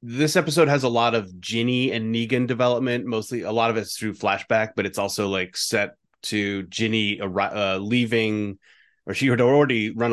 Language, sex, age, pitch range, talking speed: English, male, 30-49, 95-115 Hz, 185 wpm